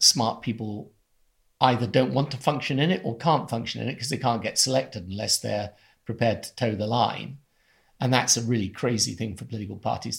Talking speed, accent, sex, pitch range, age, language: 205 wpm, British, male, 110-130 Hz, 50-69, English